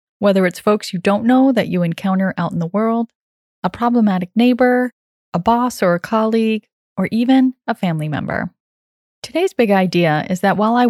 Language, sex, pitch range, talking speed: English, female, 175-230 Hz, 180 wpm